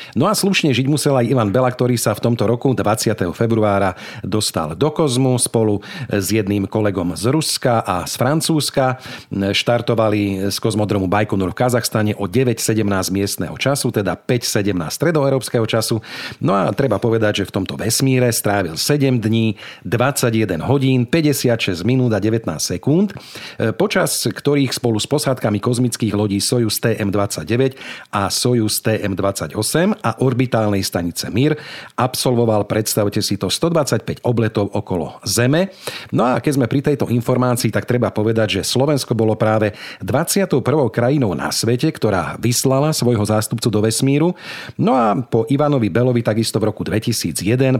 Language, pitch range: Slovak, 105-130 Hz